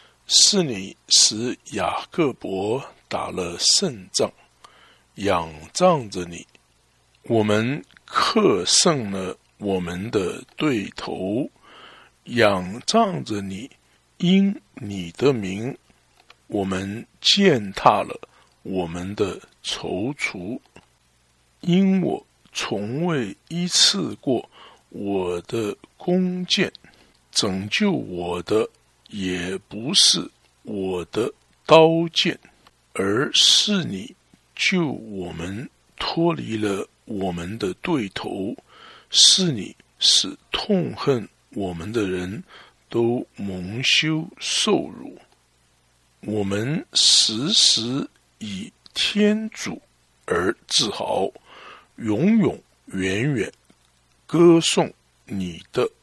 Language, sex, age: English, male, 60-79